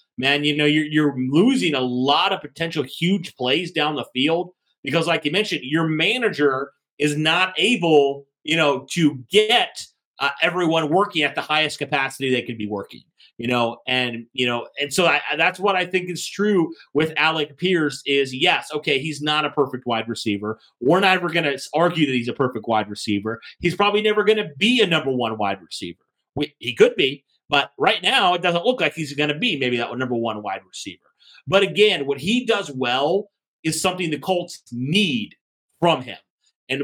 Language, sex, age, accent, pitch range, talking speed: English, male, 30-49, American, 140-190 Hz, 195 wpm